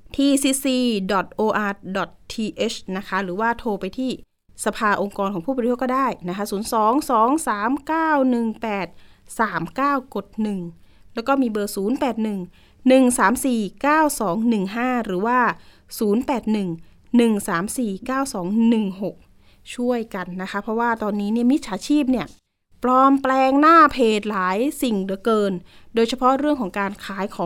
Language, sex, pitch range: Thai, female, 210-270 Hz